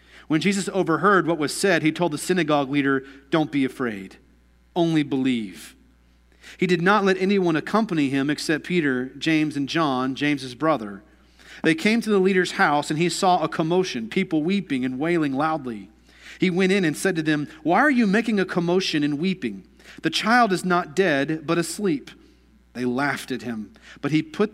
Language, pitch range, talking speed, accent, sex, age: English, 145-190 Hz, 185 wpm, American, male, 40-59